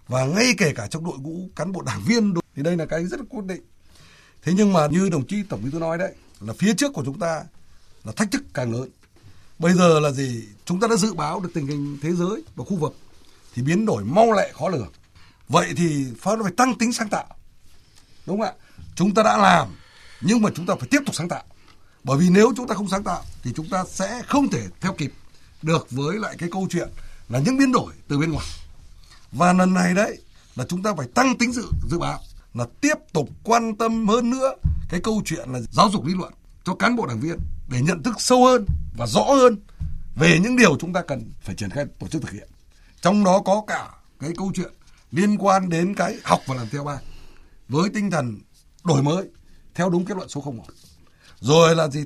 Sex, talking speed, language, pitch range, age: male, 235 wpm, Vietnamese, 125-210 Hz, 60-79